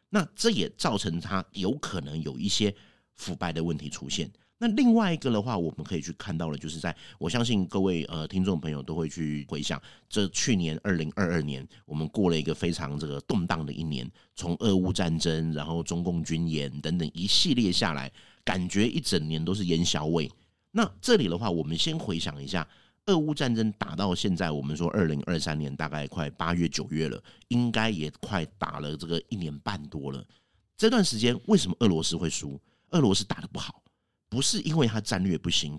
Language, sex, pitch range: Chinese, male, 80-110 Hz